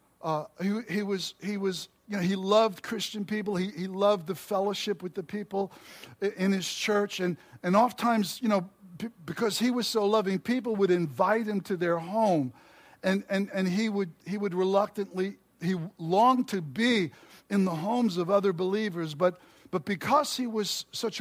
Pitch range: 165-205 Hz